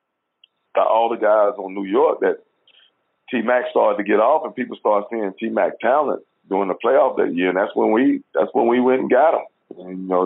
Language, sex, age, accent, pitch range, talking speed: English, male, 50-69, American, 95-115 Hz, 215 wpm